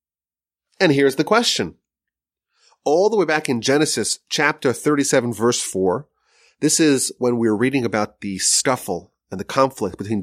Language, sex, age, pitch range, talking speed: English, male, 30-49, 95-160 Hz, 155 wpm